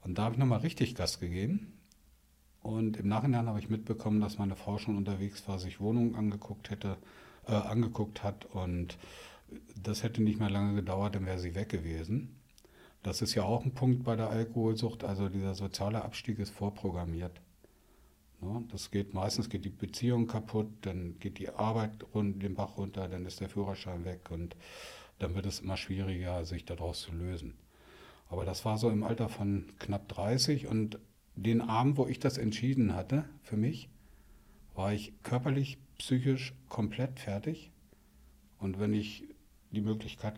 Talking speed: 170 wpm